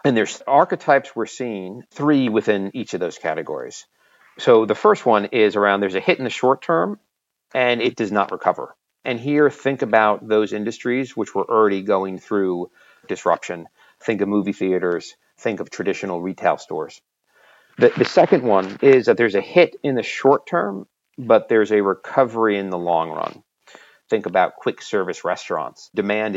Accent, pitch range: American, 95-130 Hz